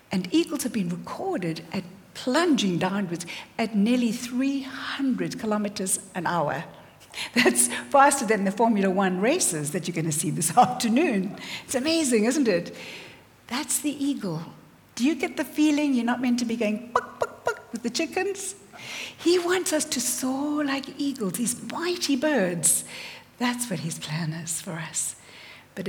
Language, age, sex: English, 60-79, female